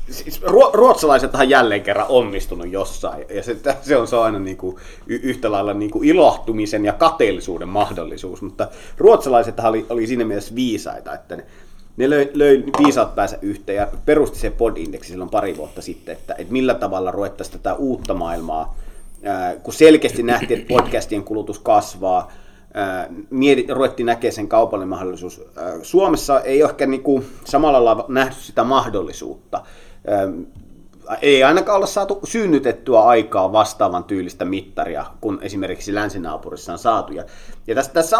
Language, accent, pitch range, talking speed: Finnish, native, 105-175 Hz, 140 wpm